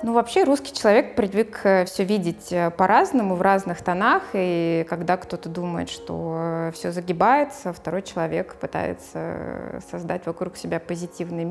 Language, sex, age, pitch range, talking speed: Russian, female, 20-39, 165-195 Hz, 130 wpm